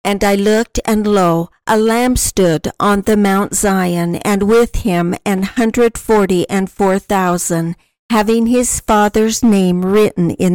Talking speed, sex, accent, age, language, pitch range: 155 wpm, female, American, 50-69, English, 185-220 Hz